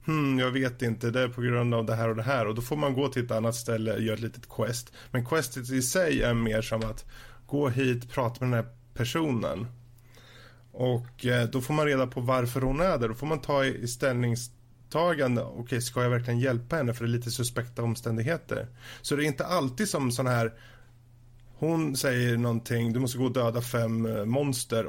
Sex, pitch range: male, 115-130 Hz